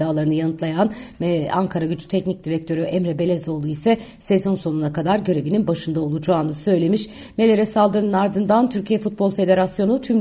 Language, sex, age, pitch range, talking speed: Turkish, female, 60-79, 170-210 Hz, 140 wpm